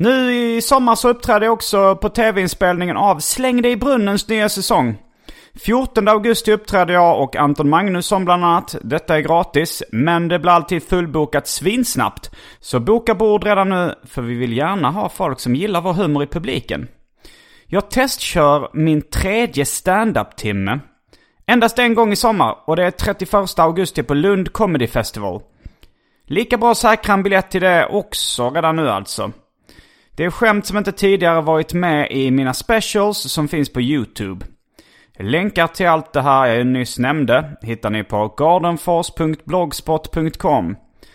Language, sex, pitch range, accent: Swedish, male, 140-200 Hz, native